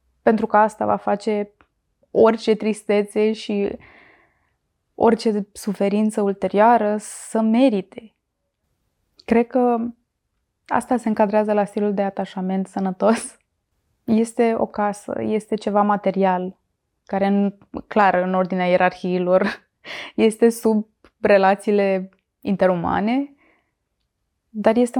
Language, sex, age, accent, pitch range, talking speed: Romanian, female, 20-39, native, 185-225 Hz, 95 wpm